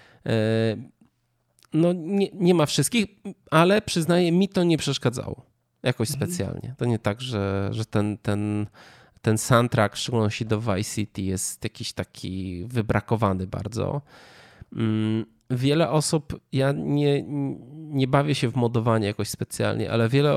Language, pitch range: Polish, 110-135 Hz